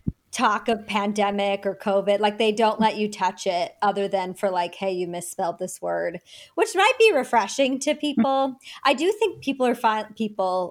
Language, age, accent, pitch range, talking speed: English, 30-49, American, 205-255 Hz, 190 wpm